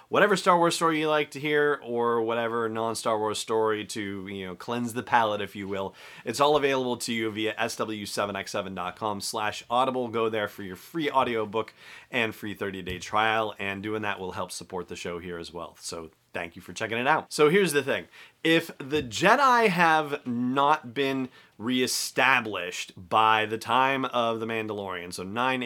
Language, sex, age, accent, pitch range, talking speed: English, male, 30-49, American, 110-150 Hz, 180 wpm